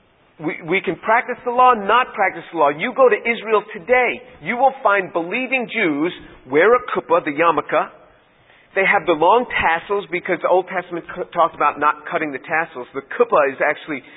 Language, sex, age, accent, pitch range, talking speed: English, male, 40-59, American, 175-245 Hz, 185 wpm